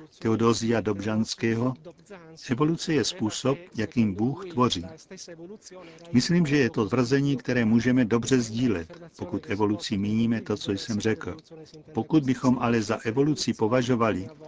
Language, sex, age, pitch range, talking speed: Czech, male, 50-69, 110-150 Hz, 125 wpm